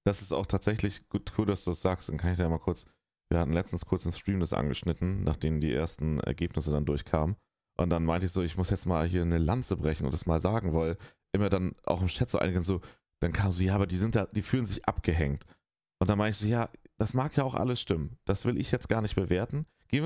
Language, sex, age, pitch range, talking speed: German, male, 30-49, 90-120 Hz, 265 wpm